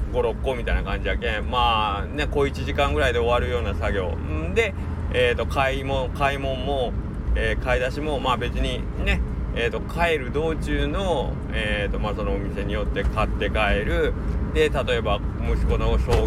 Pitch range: 80-125 Hz